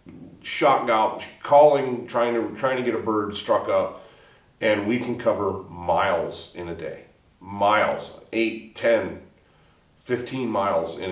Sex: male